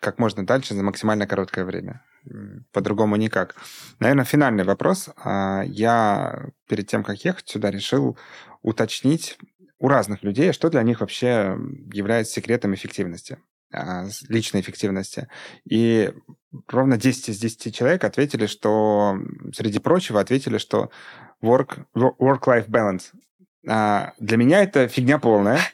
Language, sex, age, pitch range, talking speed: Russian, male, 20-39, 105-125 Hz, 120 wpm